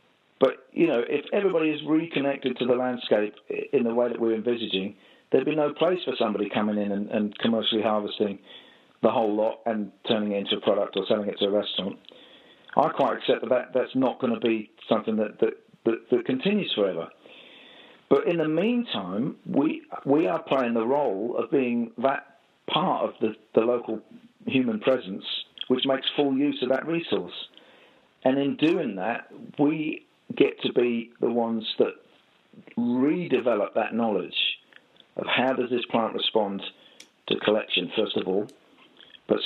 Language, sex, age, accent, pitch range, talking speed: English, male, 50-69, British, 110-145 Hz, 170 wpm